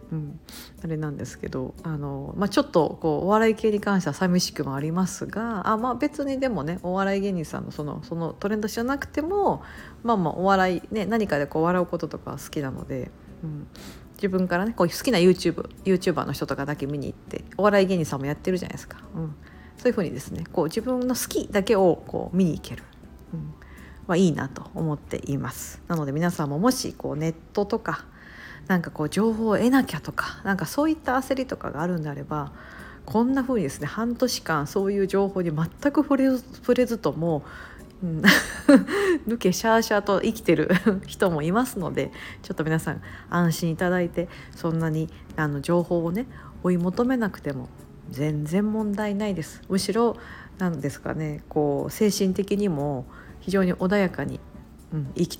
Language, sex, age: Japanese, female, 50-69